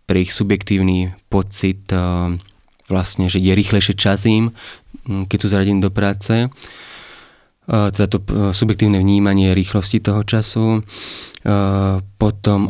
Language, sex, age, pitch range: Slovak, male, 20-39, 95-105 Hz